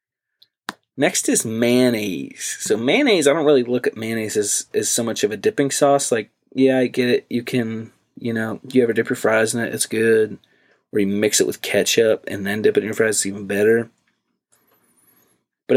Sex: male